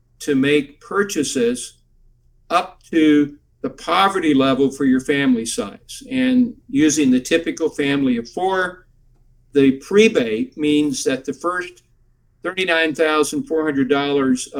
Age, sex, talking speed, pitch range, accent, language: 50-69, male, 105 wpm, 130-190 Hz, American, English